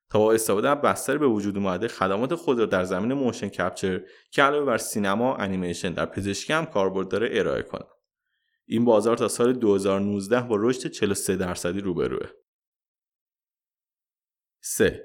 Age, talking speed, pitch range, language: 20-39, 155 wpm, 100-145 Hz, Persian